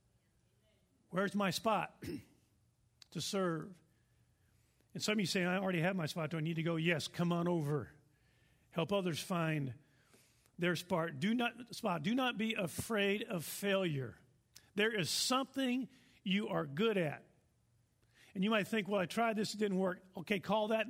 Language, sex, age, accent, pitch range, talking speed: English, male, 50-69, American, 140-200 Hz, 170 wpm